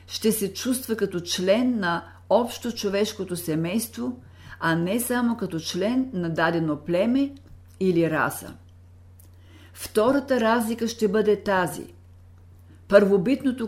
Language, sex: Bulgarian, female